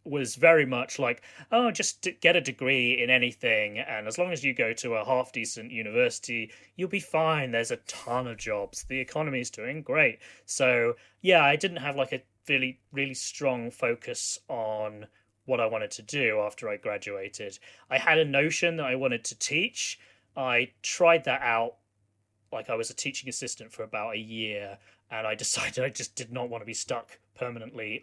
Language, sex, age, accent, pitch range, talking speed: English, male, 30-49, British, 110-145 Hz, 190 wpm